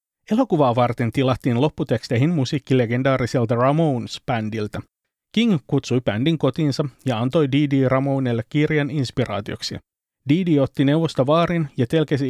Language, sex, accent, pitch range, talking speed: Finnish, male, native, 125-155 Hz, 105 wpm